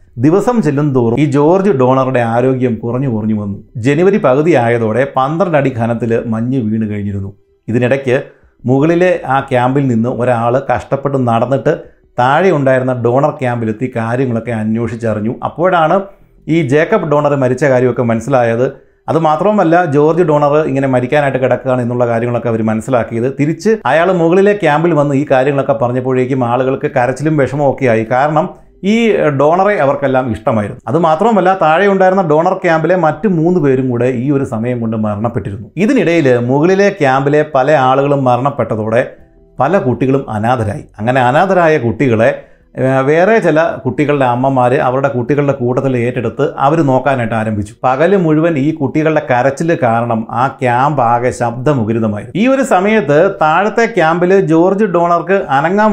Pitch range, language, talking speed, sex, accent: 120-160 Hz, Malayalam, 130 wpm, male, native